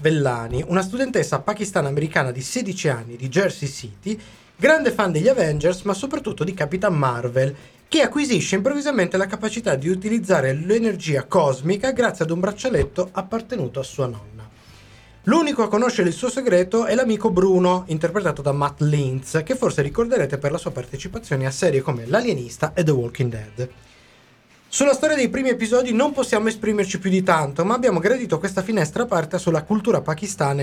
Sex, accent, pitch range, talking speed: male, native, 140-215 Hz, 165 wpm